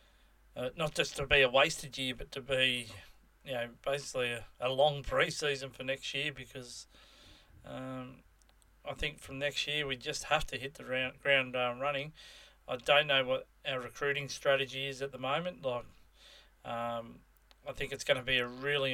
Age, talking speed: 30-49, 185 wpm